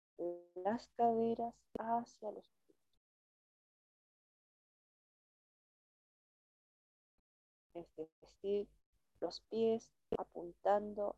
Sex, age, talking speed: female, 30-49, 55 wpm